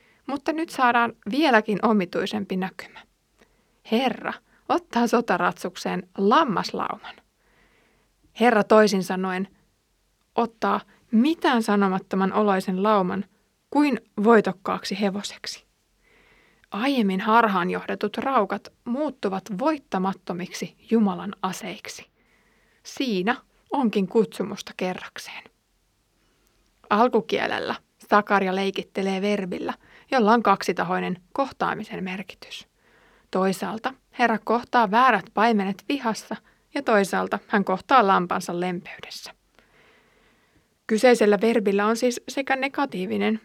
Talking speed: 85 wpm